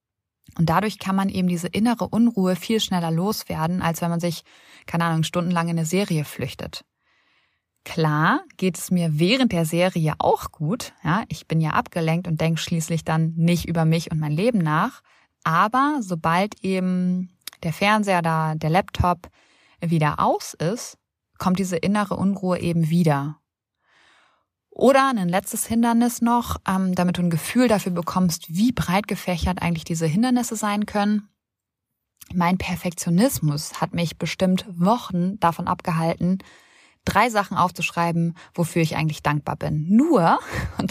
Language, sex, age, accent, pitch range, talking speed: German, female, 20-39, German, 165-200 Hz, 150 wpm